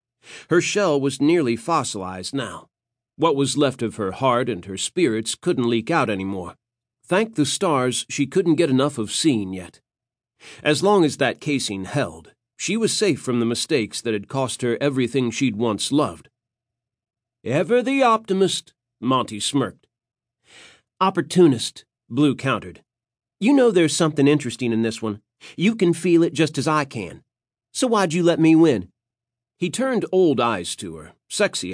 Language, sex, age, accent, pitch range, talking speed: English, male, 40-59, American, 115-155 Hz, 165 wpm